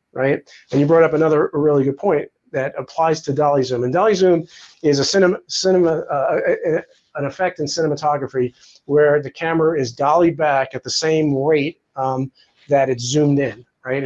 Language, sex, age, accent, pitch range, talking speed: English, male, 40-59, American, 130-160 Hz, 190 wpm